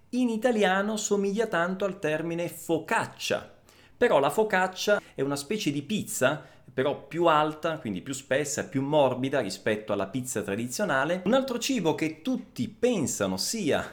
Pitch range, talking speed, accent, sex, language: 115-185 Hz, 145 wpm, native, male, Italian